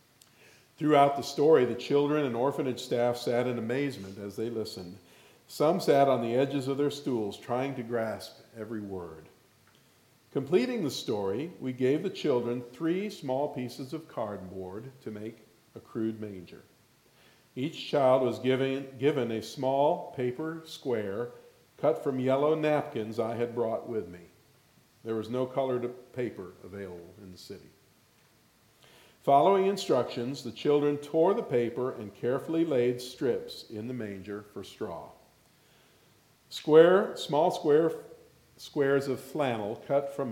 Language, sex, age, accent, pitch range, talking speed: English, male, 50-69, American, 110-140 Hz, 140 wpm